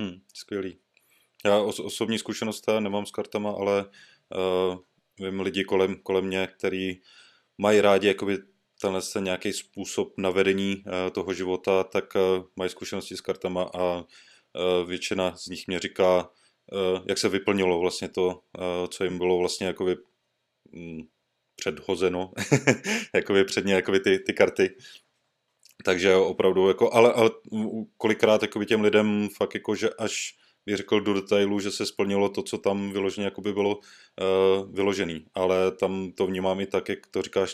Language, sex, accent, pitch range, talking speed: Czech, male, native, 90-100 Hz, 155 wpm